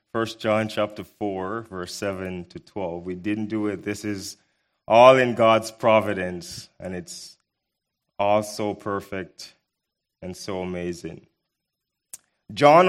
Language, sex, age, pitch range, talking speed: English, male, 30-49, 105-130 Hz, 125 wpm